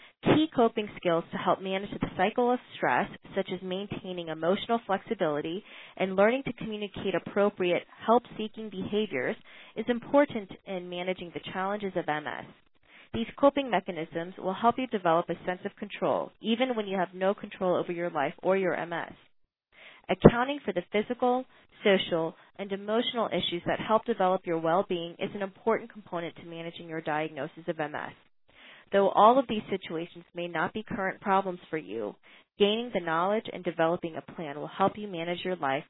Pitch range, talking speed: 170-215 Hz, 170 wpm